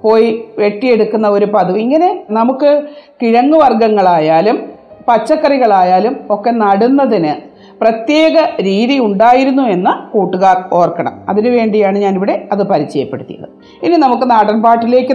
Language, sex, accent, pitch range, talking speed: Malayalam, female, native, 210-275 Hz, 90 wpm